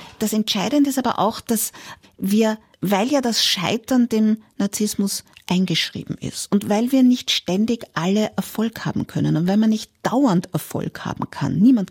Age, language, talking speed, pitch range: 50-69, German, 165 wpm, 185-230 Hz